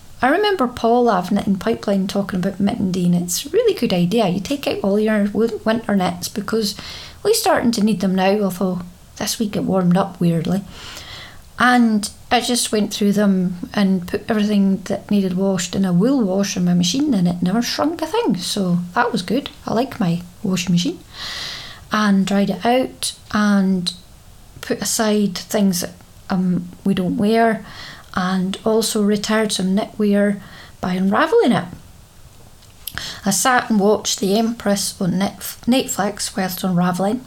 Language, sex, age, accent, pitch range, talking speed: English, female, 30-49, British, 190-225 Hz, 160 wpm